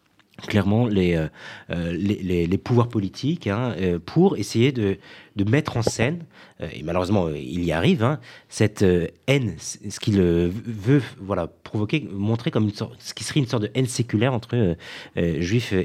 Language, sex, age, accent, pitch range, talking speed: French, male, 30-49, French, 90-120 Hz, 180 wpm